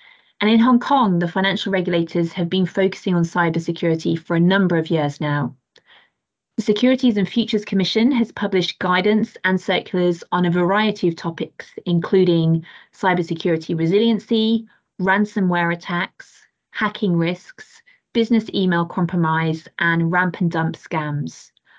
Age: 30-49